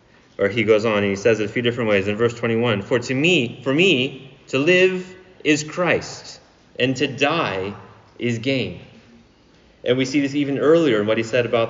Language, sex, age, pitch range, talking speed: English, male, 30-49, 110-145 Hz, 205 wpm